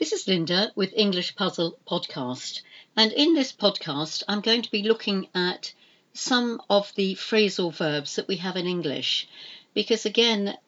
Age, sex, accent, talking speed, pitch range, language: 60-79, female, British, 165 wpm, 165-215 Hz, English